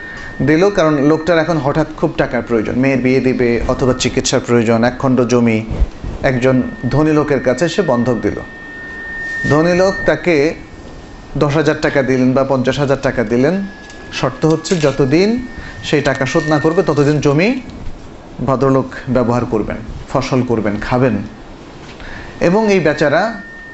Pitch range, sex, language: 130-205 Hz, male, Bengali